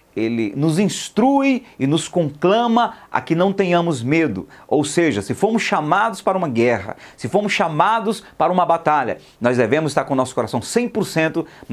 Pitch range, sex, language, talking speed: 160-210 Hz, male, Portuguese, 170 wpm